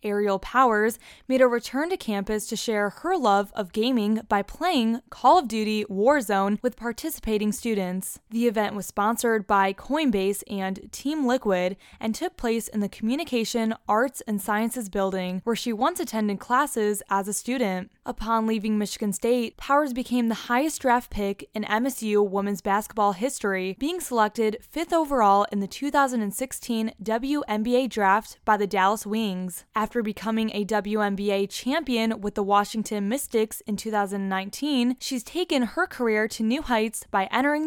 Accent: American